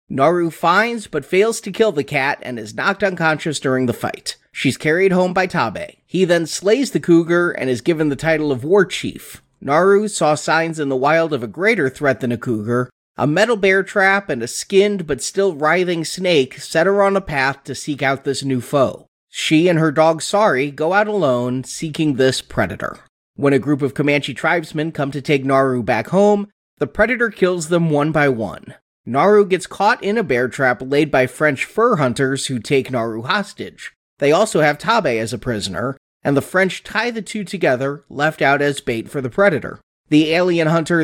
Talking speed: 200 wpm